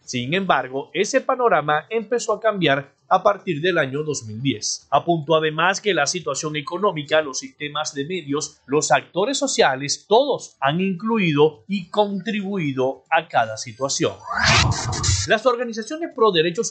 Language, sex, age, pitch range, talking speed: Spanish, male, 30-49, 150-205 Hz, 135 wpm